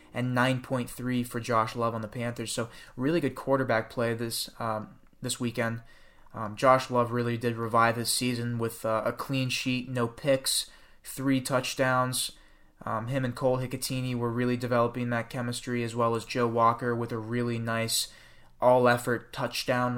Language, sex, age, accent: English, male, 20-39, American